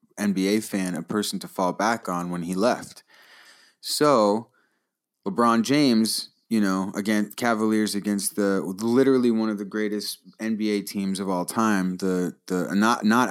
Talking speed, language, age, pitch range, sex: 155 wpm, English, 20-39, 95-110 Hz, male